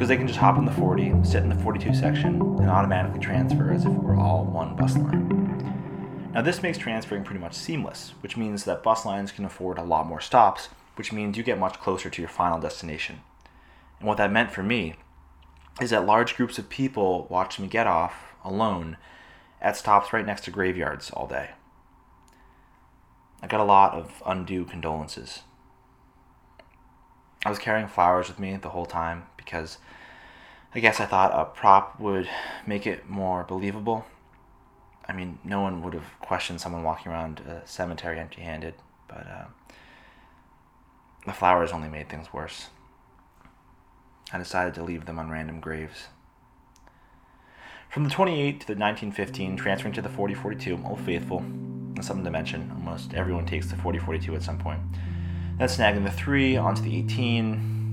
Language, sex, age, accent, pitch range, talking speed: English, male, 20-39, American, 85-110 Hz, 170 wpm